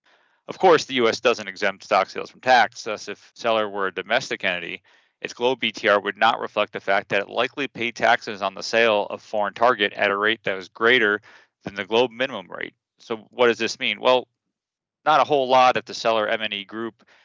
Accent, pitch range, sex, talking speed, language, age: American, 100-120 Hz, male, 215 wpm, English, 30-49